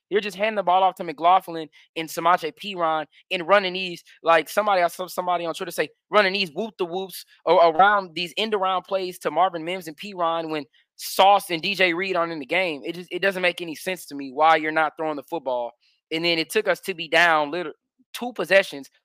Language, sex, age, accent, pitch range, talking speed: English, male, 20-39, American, 155-180 Hz, 225 wpm